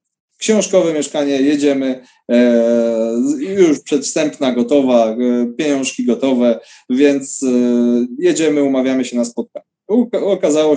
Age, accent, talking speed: 20-39, native, 85 wpm